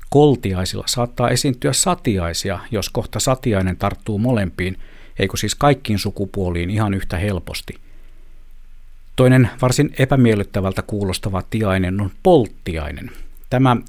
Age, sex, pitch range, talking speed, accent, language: 60-79, male, 95-120 Hz, 105 wpm, native, Finnish